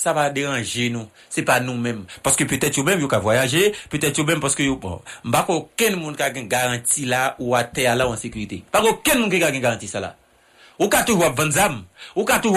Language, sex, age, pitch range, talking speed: English, male, 60-79, 115-155 Hz, 250 wpm